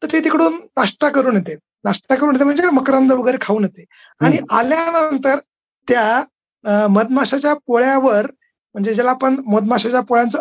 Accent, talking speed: native, 140 wpm